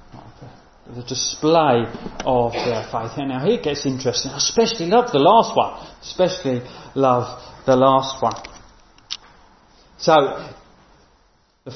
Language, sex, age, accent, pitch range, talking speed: English, male, 40-59, British, 130-195 Hz, 115 wpm